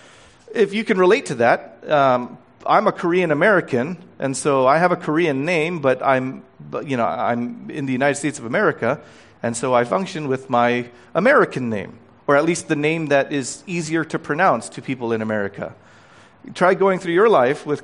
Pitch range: 140-195 Hz